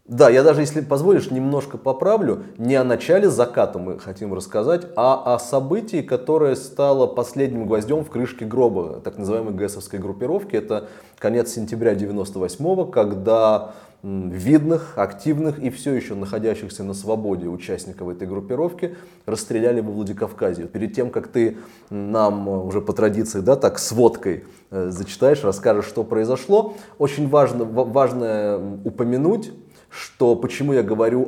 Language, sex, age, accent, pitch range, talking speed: Russian, male, 20-39, native, 105-135 Hz, 140 wpm